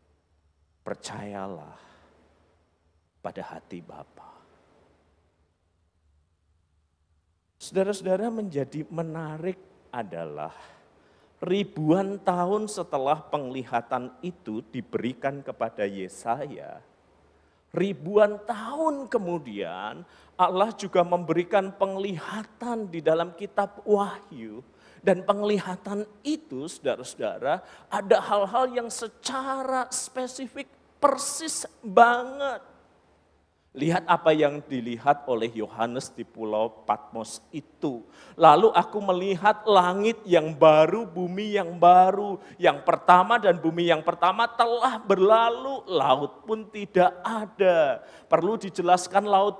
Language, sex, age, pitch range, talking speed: Malay, male, 50-69, 145-225 Hz, 85 wpm